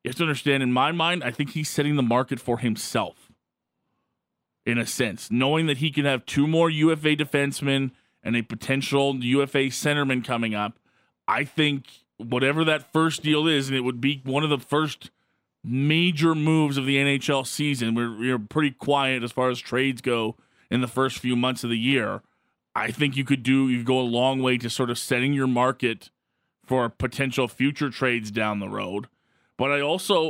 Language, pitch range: English, 120-150 Hz